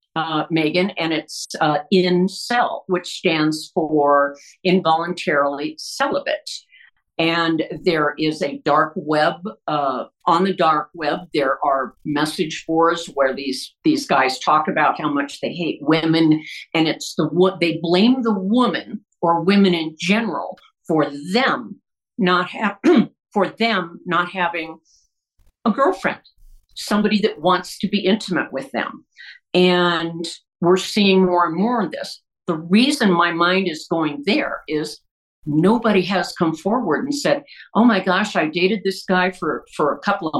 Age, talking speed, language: 50-69, 155 wpm, English